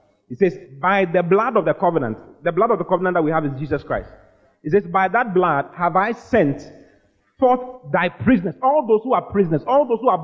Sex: male